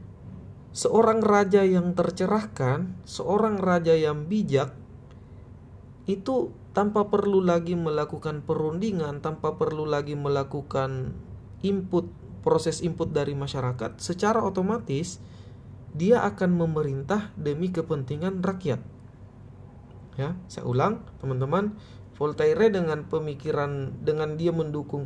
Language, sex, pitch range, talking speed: Indonesian, male, 125-175 Hz, 100 wpm